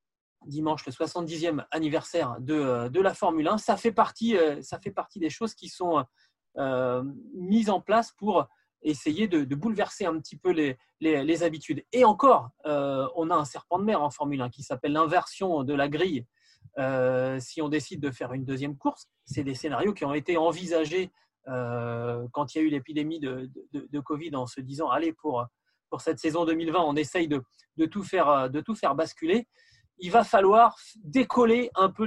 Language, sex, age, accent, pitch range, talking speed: French, male, 20-39, French, 150-205 Hz, 200 wpm